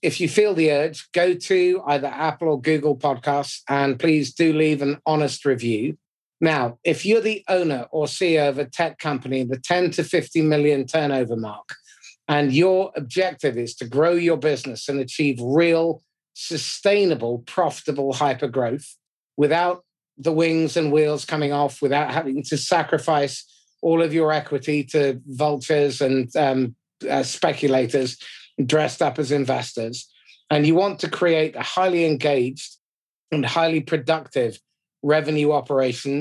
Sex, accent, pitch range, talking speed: male, British, 135-165 Hz, 150 wpm